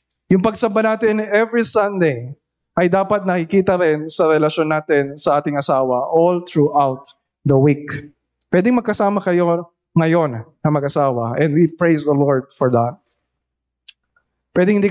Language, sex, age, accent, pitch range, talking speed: Filipino, male, 20-39, native, 160-210 Hz, 135 wpm